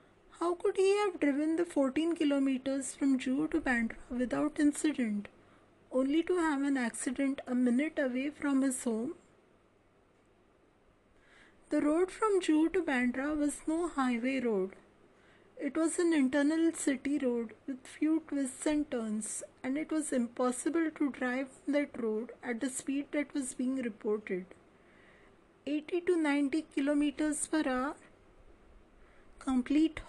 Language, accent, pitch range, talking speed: English, Indian, 250-305 Hz, 135 wpm